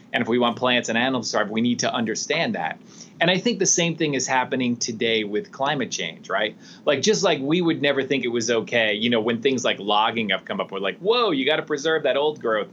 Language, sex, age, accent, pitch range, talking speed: English, male, 30-49, American, 115-175 Hz, 260 wpm